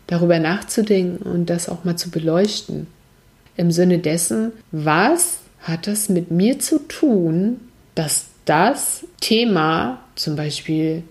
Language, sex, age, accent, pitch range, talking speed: German, female, 60-79, German, 170-205 Hz, 125 wpm